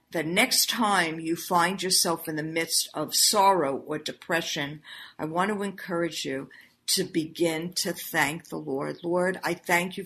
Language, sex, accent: English, female, American